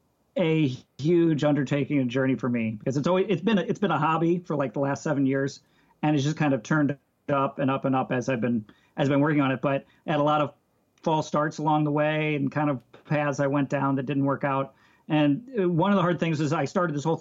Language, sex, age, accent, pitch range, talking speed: English, male, 40-59, American, 130-155 Hz, 265 wpm